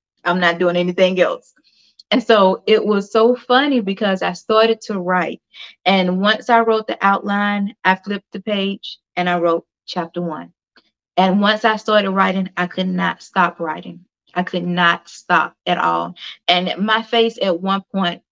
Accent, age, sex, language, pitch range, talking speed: American, 20-39, female, English, 180-225 Hz, 175 wpm